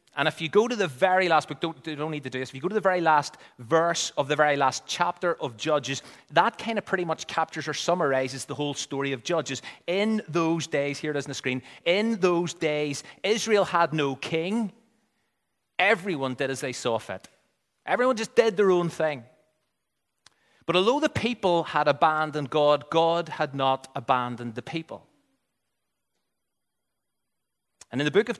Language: English